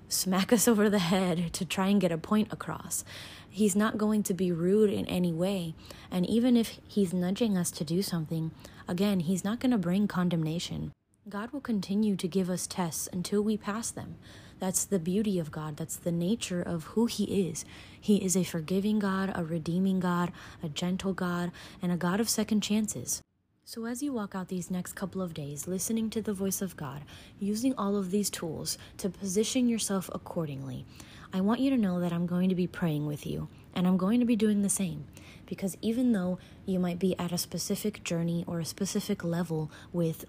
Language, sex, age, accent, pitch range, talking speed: English, female, 20-39, American, 170-205 Hz, 205 wpm